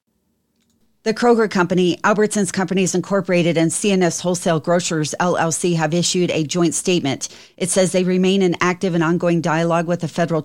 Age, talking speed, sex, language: 40-59, 160 wpm, female, English